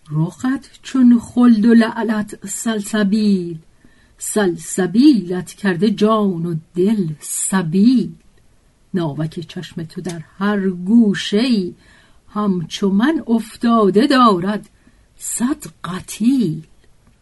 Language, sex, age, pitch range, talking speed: Persian, female, 50-69, 175-230 Hz, 85 wpm